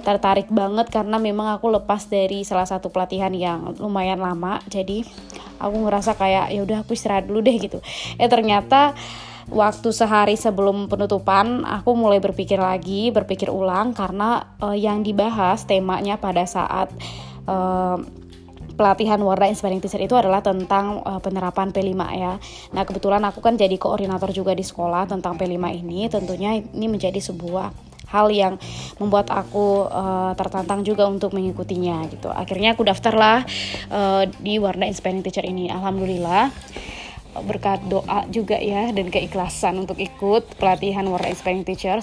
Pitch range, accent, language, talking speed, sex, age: 185-210 Hz, native, Indonesian, 150 wpm, female, 20-39